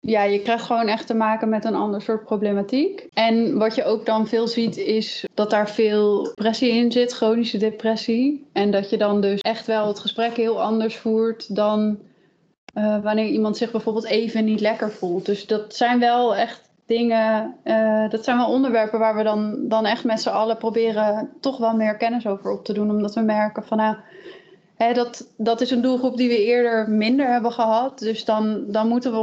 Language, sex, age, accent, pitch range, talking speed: Dutch, female, 20-39, Dutch, 210-230 Hz, 205 wpm